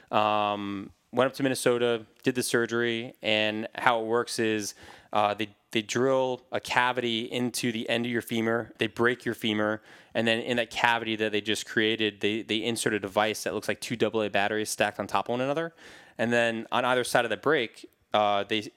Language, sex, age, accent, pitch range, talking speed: English, male, 20-39, American, 105-120 Hz, 210 wpm